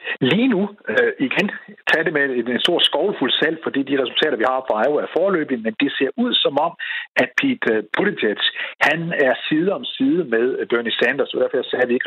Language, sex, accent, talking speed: Danish, male, native, 215 wpm